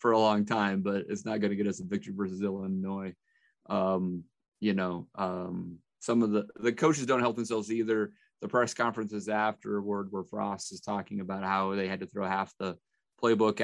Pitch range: 100-115 Hz